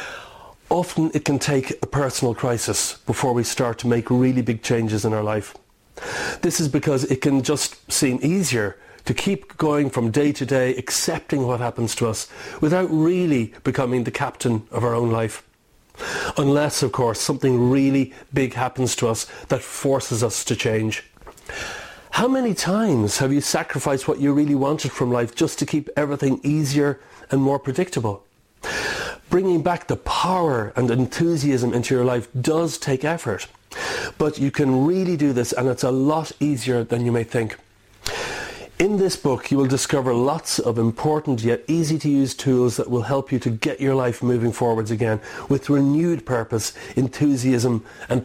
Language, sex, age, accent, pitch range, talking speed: English, male, 40-59, Irish, 120-150 Hz, 170 wpm